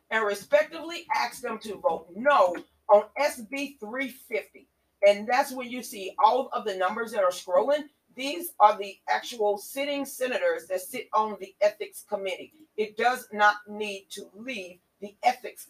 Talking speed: 160 wpm